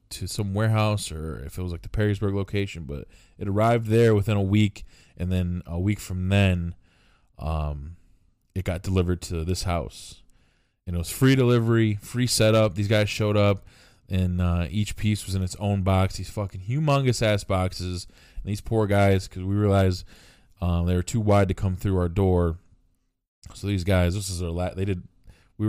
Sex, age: male, 20-39